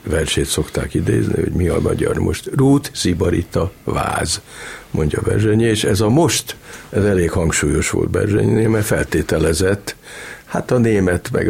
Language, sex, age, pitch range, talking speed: Hungarian, male, 60-79, 85-110 Hz, 145 wpm